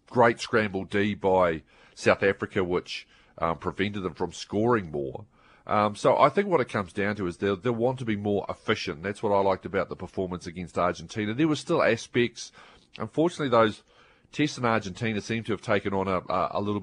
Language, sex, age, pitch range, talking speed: English, male, 40-59, 95-110 Hz, 200 wpm